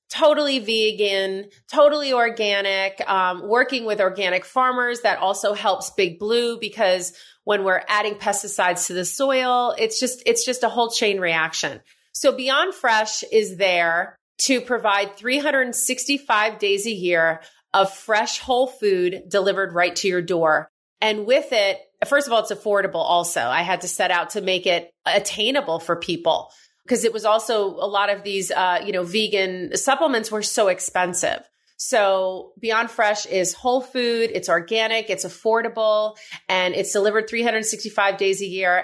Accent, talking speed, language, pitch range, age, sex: American, 160 wpm, English, 185-235 Hz, 30-49, female